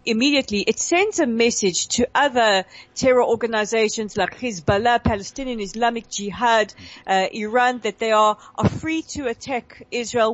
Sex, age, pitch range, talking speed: female, 40-59, 200-265 Hz, 140 wpm